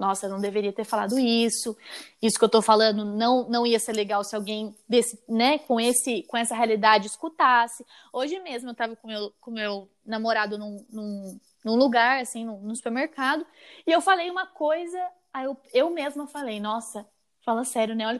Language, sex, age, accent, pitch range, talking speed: Portuguese, female, 20-39, Brazilian, 215-280 Hz, 195 wpm